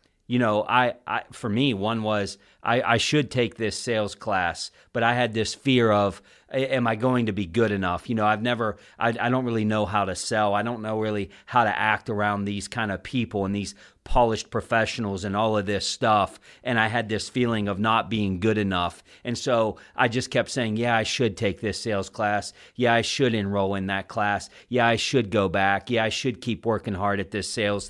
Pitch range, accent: 105-120 Hz, American